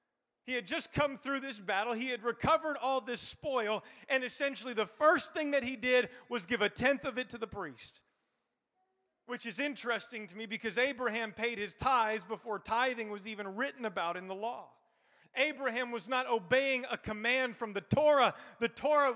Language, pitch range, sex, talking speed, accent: English, 225-270 Hz, male, 190 wpm, American